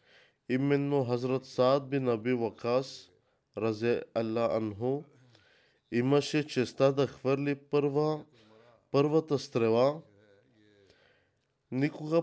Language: Bulgarian